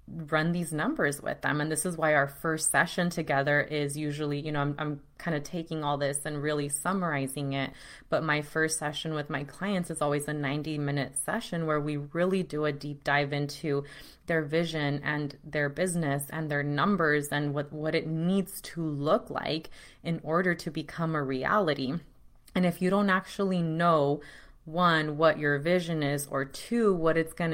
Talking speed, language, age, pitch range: 185 wpm, English, 20-39, 145-170 Hz